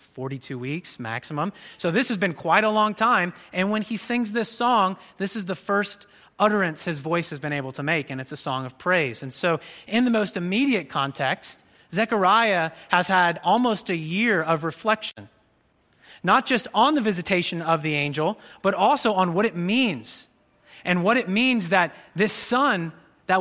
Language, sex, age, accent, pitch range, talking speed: English, male, 30-49, American, 165-225 Hz, 185 wpm